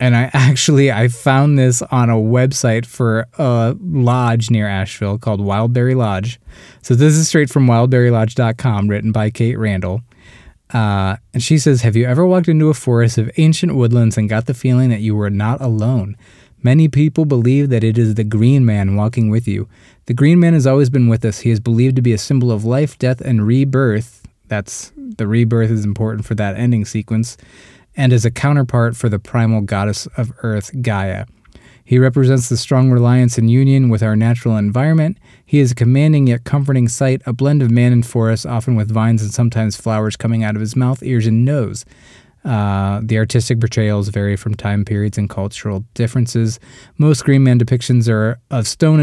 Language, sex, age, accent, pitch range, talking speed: English, male, 20-39, American, 110-130 Hz, 195 wpm